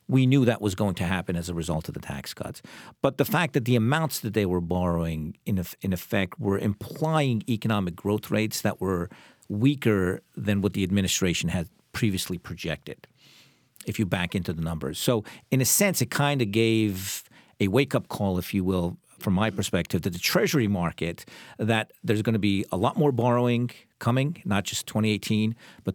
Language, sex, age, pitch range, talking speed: English, male, 50-69, 100-120 Hz, 195 wpm